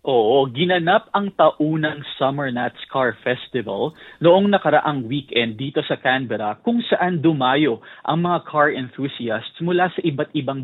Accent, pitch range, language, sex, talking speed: native, 130-170 Hz, Filipino, male, 145 wpm